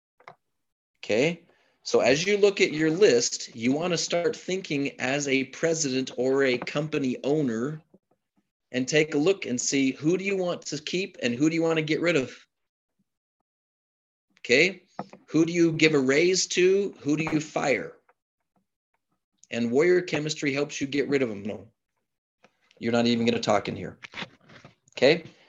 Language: English